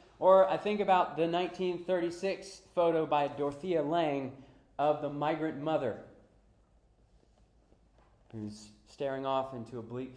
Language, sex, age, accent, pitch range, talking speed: English, male, 30-49, American, 115-170 Hz, 120 wpm